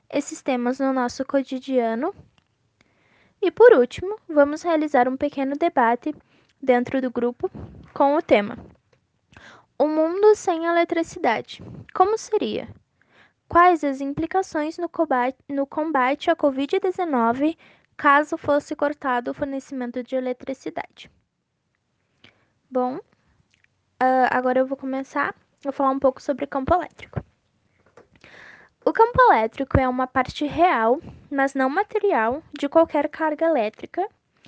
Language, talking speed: Portuguese, 115 wpm